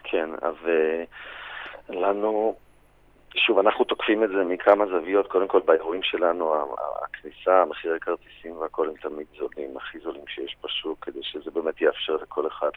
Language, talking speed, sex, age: Hebrew, 145 wpm, male, 40-59